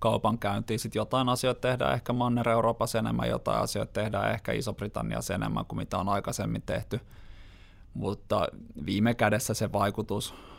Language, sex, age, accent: Finnish, male, 20-39, native